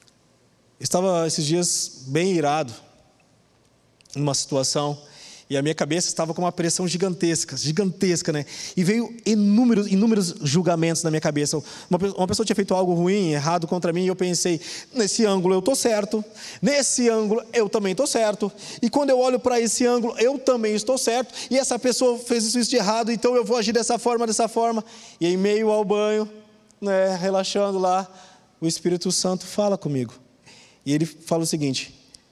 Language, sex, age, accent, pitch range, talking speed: Portuguese, male, 20-39, Brazilian, 155-205 Hz, 175 wpm